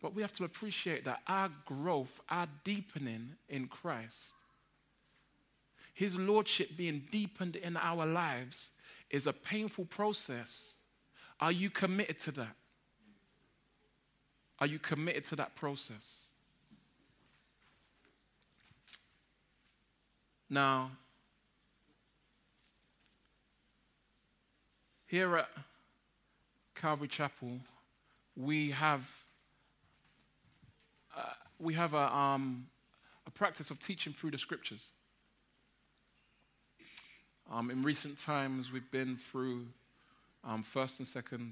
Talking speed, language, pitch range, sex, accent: 90 wpm, English, 125-170 Hz, male, British